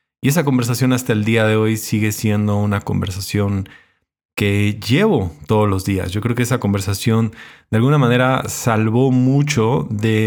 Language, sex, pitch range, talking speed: Spanish, male, 105-135 Hz, 165 wpm